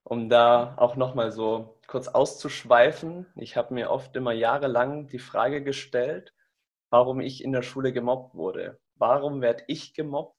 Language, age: German, 20-39